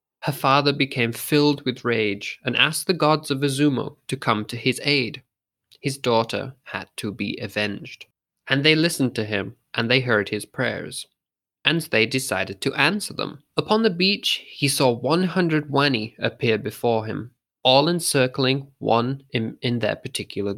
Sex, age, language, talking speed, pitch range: male, 20-39, English, 165 wpm, 115-155 Hz